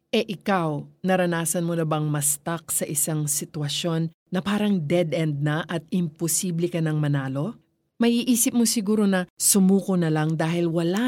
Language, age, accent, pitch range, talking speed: Filipino, 40-59, native, 160-225 Hz, 160 wpm